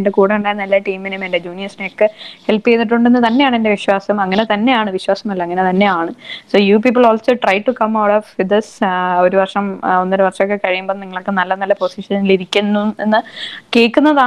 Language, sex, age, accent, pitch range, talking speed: English, female, 20-39, Indian, 195-240 Hz, 65 wpm